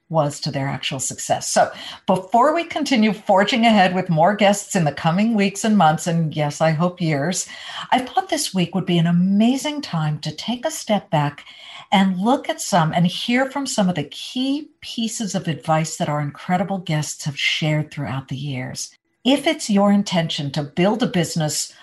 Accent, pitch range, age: American, 155-205 Hz, 50-69